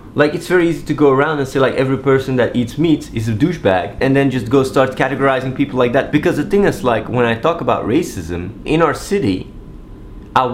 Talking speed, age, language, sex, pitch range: 235 wpm, 30-49, English, male, 105-140 Hz